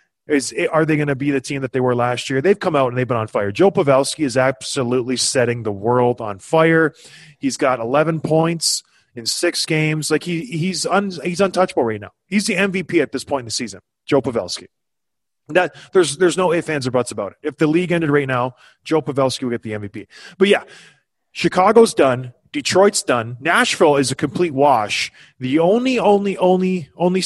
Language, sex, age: English, male, 20-39